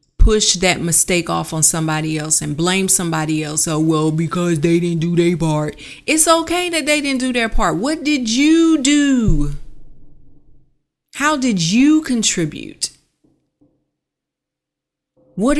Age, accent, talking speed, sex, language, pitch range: 30-49, American, 140 wpm, female, English, 150-215 Hz